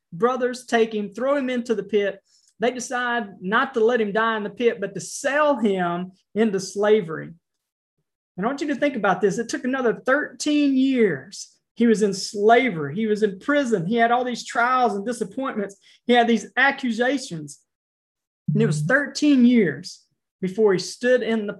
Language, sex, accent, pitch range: English, male, American, 190-235 Hz